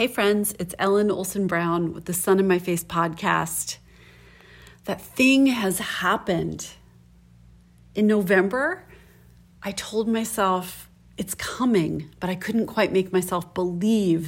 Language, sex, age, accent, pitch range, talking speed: English, female, 30-49, American, 165-200 Hz, 125 wpm